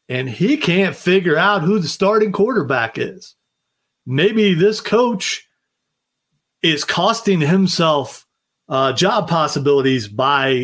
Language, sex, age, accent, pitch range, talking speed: English, male, 40-59, American, 135-190 Hz, 115 wpm